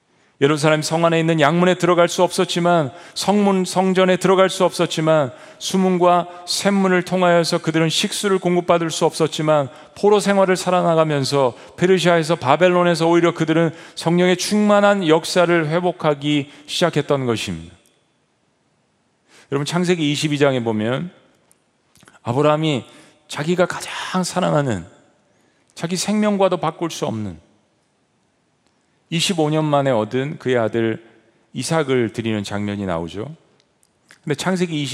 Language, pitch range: Korean, 130-175 Hz